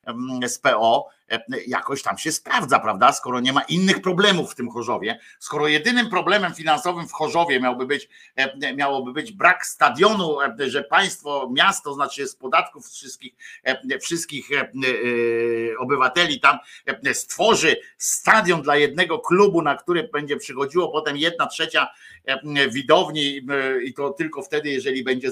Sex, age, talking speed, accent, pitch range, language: male, 50-69, 135 wpm, native, 145-215 Hz, Polish